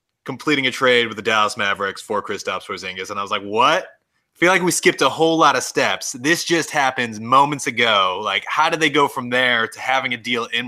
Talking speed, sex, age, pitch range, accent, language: 235 wpm, male, 20-39, 115-155 Hz, American, English